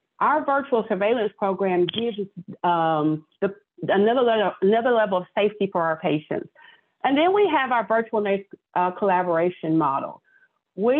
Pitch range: 185-230 Hz